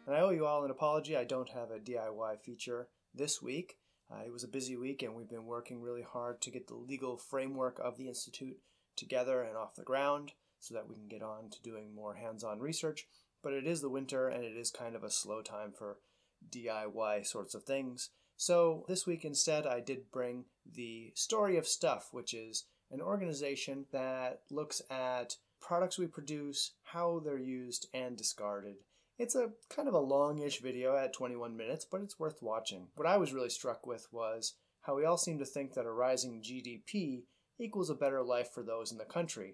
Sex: male